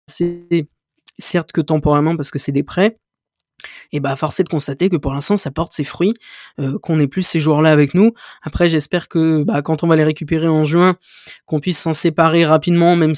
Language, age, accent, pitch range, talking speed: French, 20-39, French, 145-175 Hz, 220 wpm